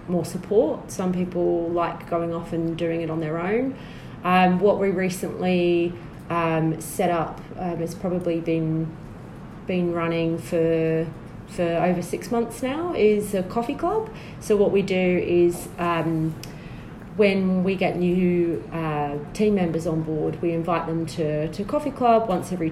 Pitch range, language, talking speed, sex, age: 160-185 Hz, English, 160 wpm, female, 30-49